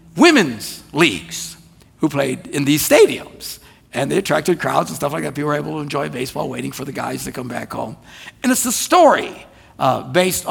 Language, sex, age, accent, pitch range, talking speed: English, male, 60-79, American, 135-190 Hz, 200 wpm